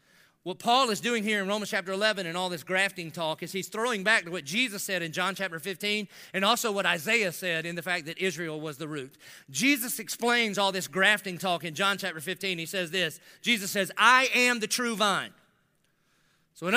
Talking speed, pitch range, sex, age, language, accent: 220 wpm, 165-220 Hz, male, 40-59, English, American